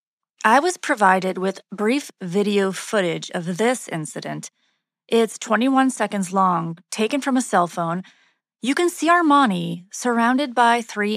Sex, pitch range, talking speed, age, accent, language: female, 185-240 Hz, 140 wpm, 30-49, American, English